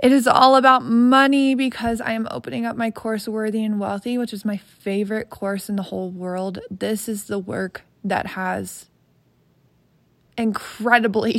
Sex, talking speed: female, 165 wpm